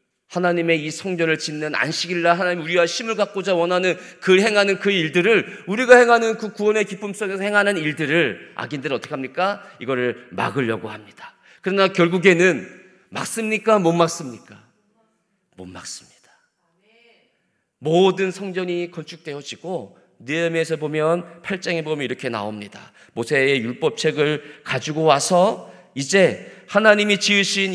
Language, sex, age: Korean, male, 40-59